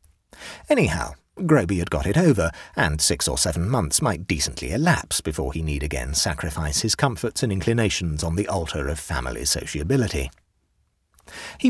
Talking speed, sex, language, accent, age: 155 wpm, male, English, British, 40-59